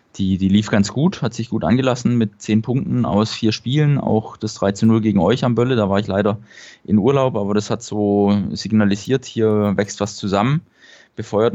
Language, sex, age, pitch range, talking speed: German, male, 20-39, 100-120 Hz, 195 wpm